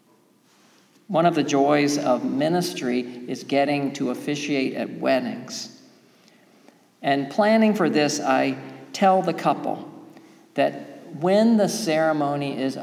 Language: English